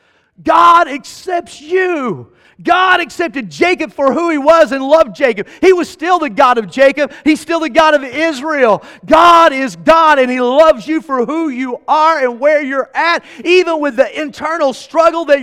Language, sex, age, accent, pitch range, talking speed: English, male, 40-59, American, 275-340 Hz, 185 wpm